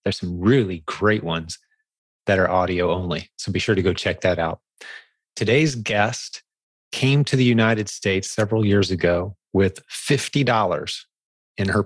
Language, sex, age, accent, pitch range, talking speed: English, male, 30-49, American, 95-115 Hz, 155 wpm